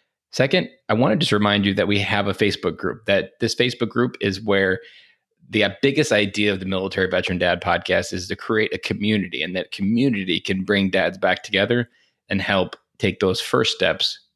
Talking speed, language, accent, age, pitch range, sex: 195 wpm, English, American, 20-39, 95-110 Hz, male